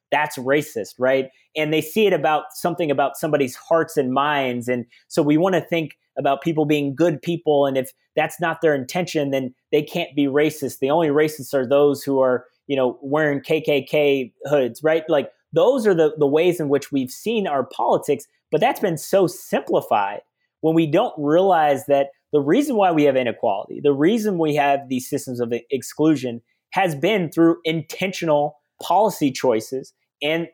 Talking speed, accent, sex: 180 wpm, American, male